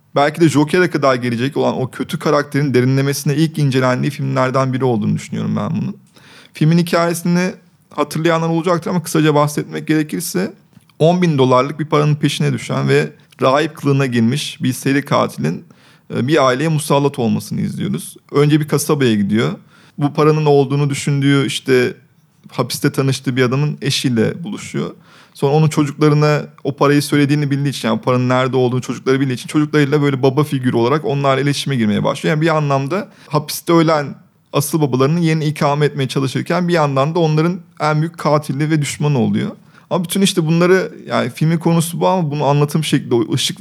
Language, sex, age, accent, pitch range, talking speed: Turkish, male, 30-49, native, 135-160 Hz, 160 wpm